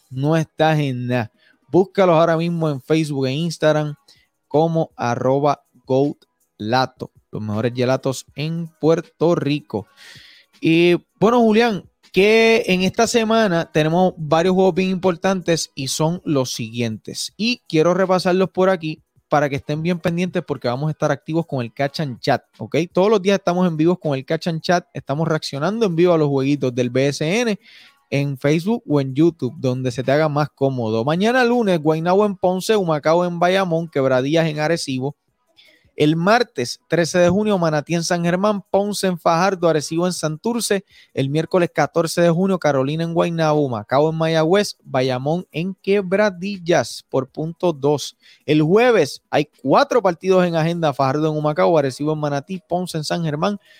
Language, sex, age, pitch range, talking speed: Spanish, male, 20-39, 145-185 Hz, 165 wpm